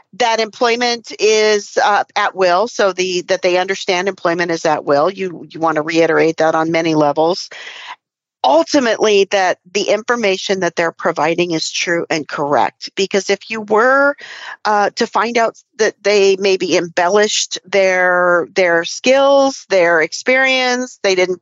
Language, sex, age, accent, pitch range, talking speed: English, female, 50-69, American, 175-230 Hz, 150 wpm